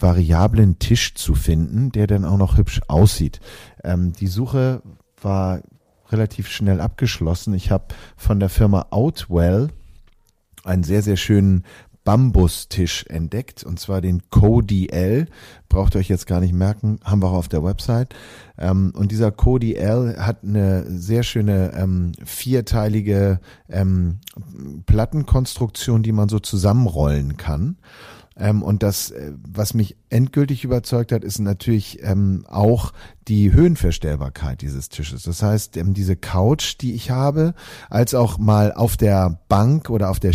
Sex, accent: male, German